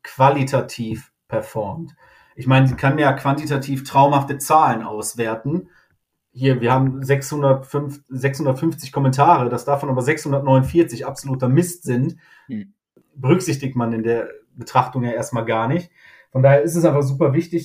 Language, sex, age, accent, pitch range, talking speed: German, male, 30-49, German, 130-150 Hz, 135 wpm